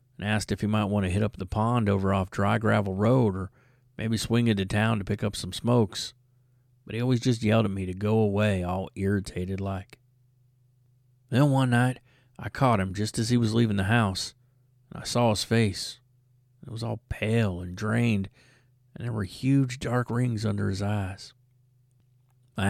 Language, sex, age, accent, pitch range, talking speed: English, male, 40-59, American, 105-125 Hz, 190 wpm